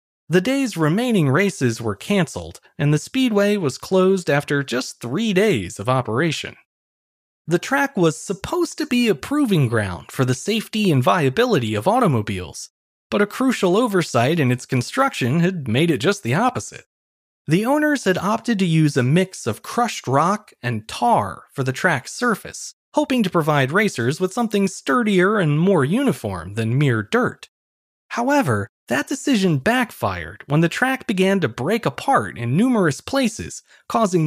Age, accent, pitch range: 30-49, American, 130-220 Hz